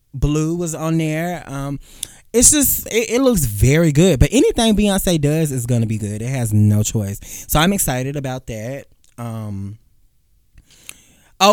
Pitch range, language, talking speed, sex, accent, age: 120-160 Hz, English, 155 wpm, male, American, 20-39